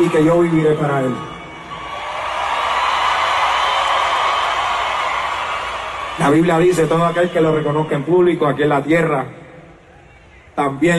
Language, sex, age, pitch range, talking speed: Spanish, male, 30-49, 145-165 Hz, 115 wpm